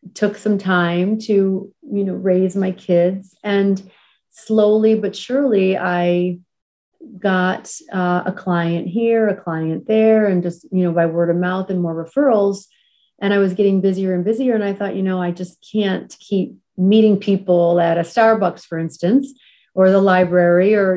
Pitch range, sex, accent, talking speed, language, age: 180-205 Hz, female, American, 170 wpm, English, 30-49